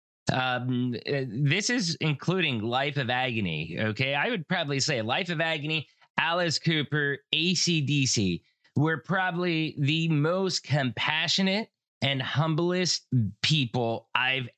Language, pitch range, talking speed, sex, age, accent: English, 115-155 Hz, 110 wpm, male, 20-39, American